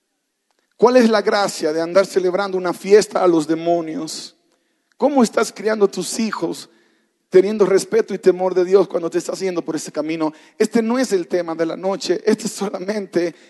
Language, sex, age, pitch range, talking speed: Spanish, male, 40-59, 190-230 Hz, 185 wpm